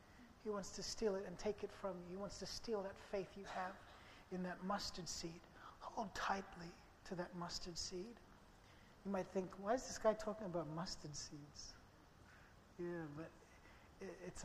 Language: English